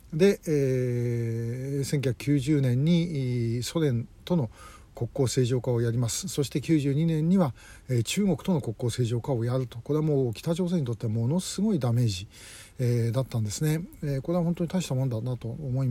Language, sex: Japanese, male